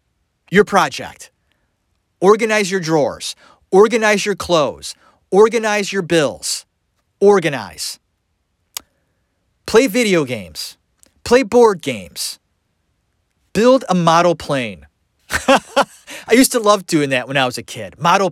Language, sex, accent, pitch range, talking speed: English, male, American, 125-190 Hz, 110 wpm